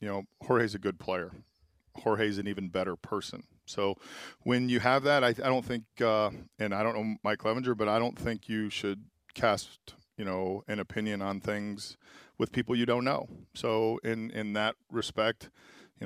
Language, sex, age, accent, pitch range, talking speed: English, male, 40-59, American, 100-115 Hz, 190 wpm